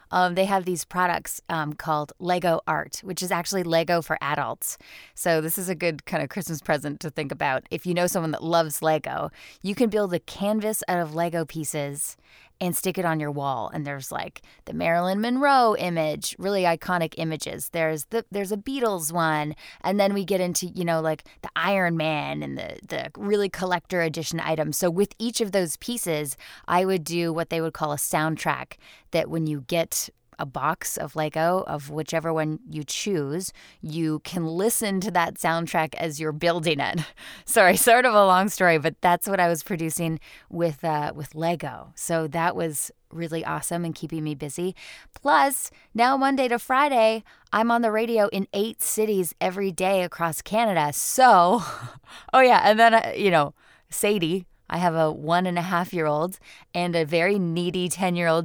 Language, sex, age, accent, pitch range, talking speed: English, female, 20-39, American, 160-200 Hz, 185 wpm